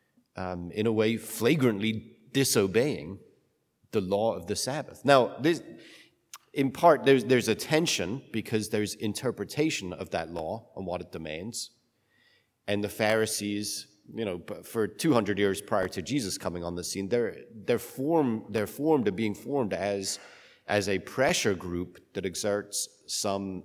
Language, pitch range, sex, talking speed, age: English, 100-125 Hz, male, 150 wpm, 30-49